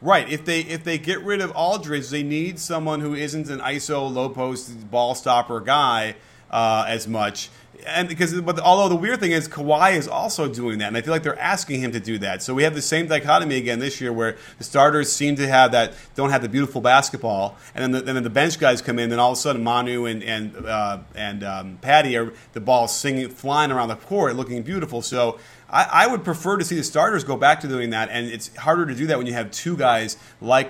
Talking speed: 245 wpm